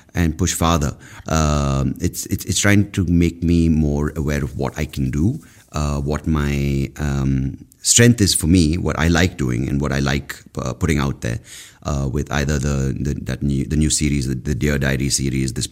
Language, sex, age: English, male, 30-49